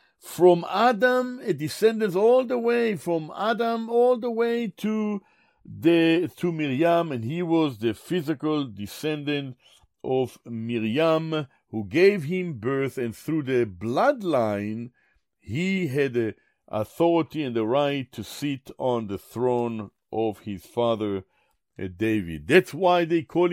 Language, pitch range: English, 125-185 Hz